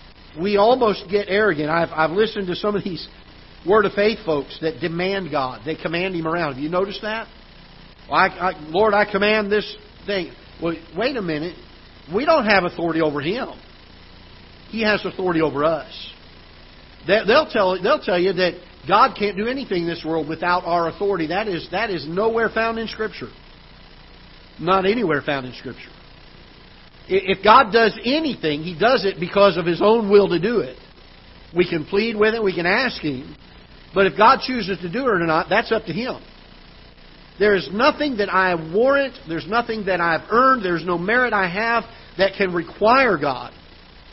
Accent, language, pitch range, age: American, English, 155-210 Hz, 50-69